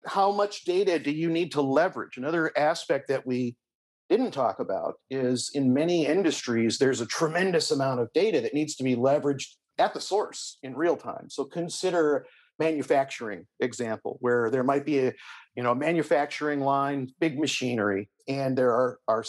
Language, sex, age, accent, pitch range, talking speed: English, male, 50-69, American, 130-175 Hz, 165 wpm